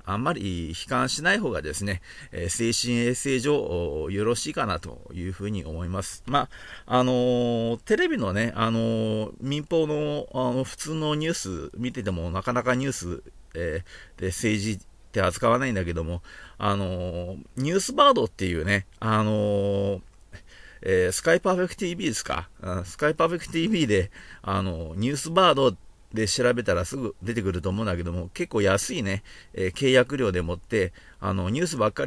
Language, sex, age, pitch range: Japanese, male, 40-59, 90-125 Hz